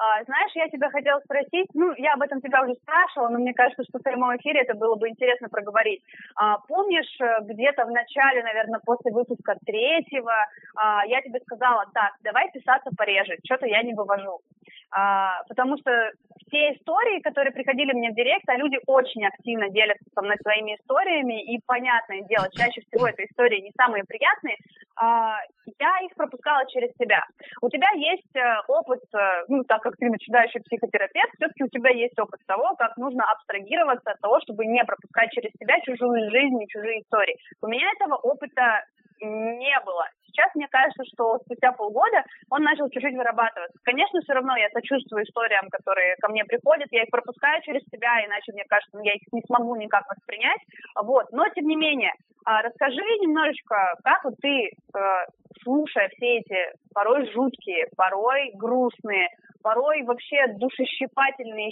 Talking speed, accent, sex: 165 wpm, native, female